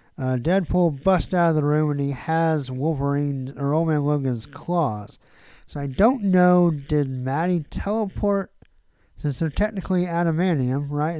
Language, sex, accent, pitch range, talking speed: English, male, American, 135-190 Hz, 150 wpm